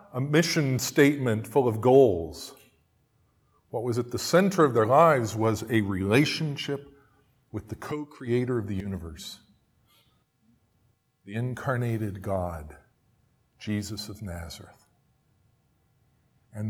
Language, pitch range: English, 105-135 Hz